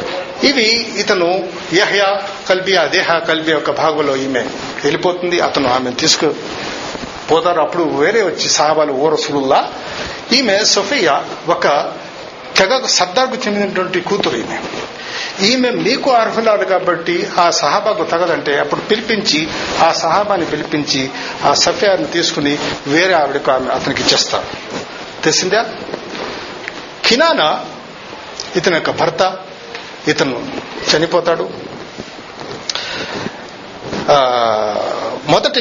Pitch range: 150-195 Hz